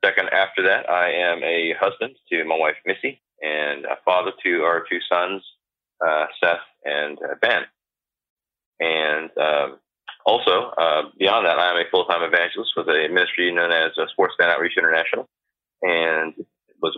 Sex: male